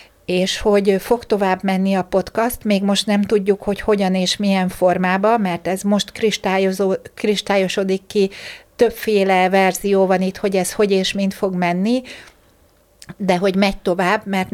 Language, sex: Hungarian, female